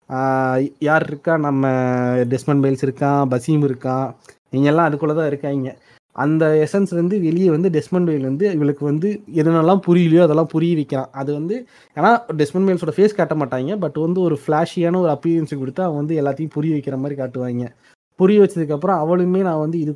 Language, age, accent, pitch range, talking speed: Tamil, 20-39, native, 135-165 Hz, 165 wpm